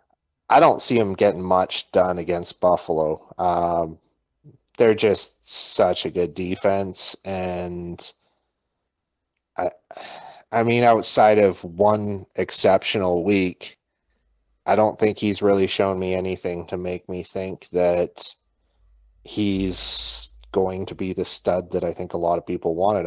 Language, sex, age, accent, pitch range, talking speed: English, male, 30-49, American, 90-105 Hz, 135 wpm